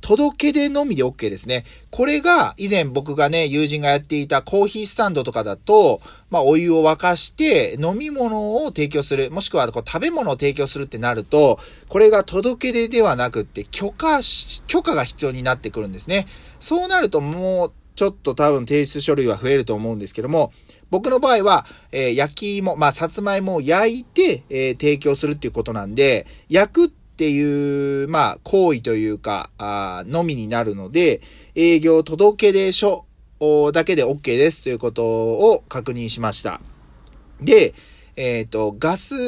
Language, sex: Japanese, male